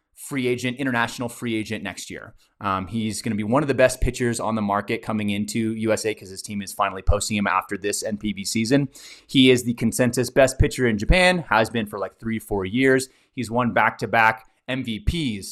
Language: English